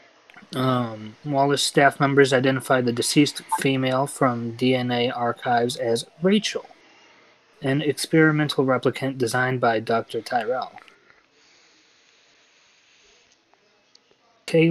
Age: 20-39